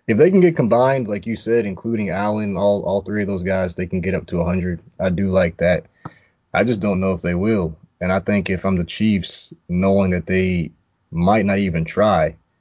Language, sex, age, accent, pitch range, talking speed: English, male, 20-39, American, 85-100 Hz, 225 wpm